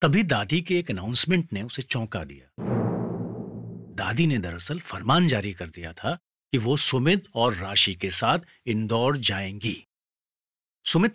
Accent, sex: native, male